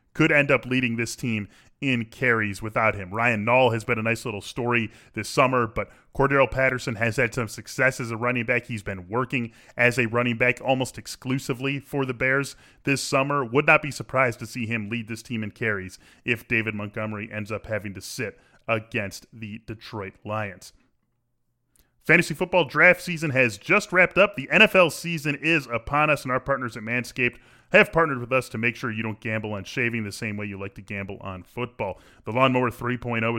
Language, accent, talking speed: English, American, 200 wpm